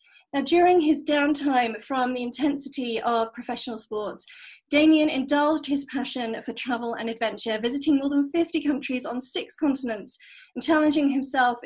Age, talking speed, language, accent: 30-49, 150 wpm, English, British